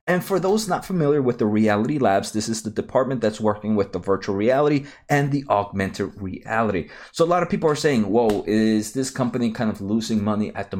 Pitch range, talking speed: 105-145 Hz, 220 wpm